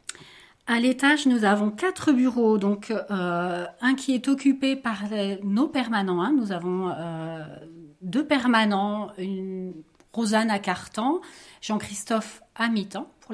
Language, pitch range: French, 190-245 Hz